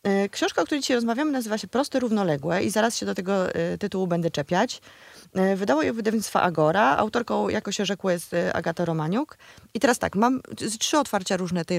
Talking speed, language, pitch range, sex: 205 wpm, Polish, 175-235 Hz, female